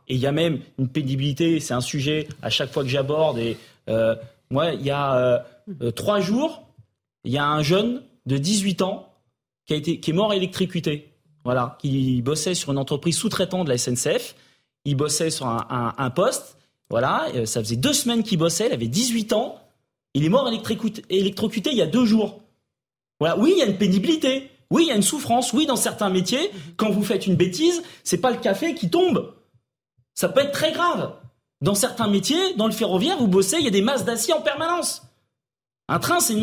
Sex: male